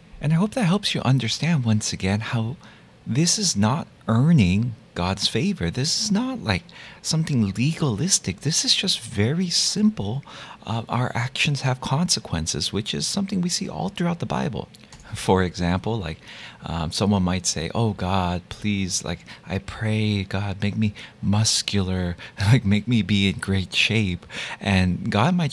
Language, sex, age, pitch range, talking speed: English, male, 30-49, 105-165 Hz, 160 wpm